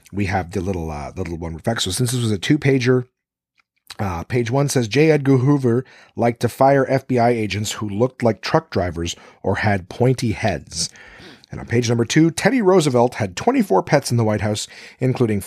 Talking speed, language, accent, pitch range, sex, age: 200 wpm, English, American, 100-140 Hz, male, 40-59